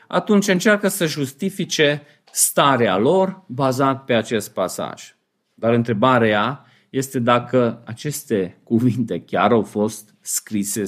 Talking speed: 110 wpm